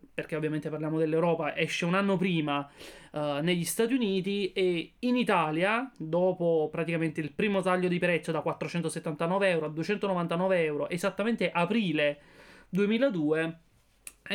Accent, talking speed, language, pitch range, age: native, 130 wpm, Italian, 160-190 Hz, 30-49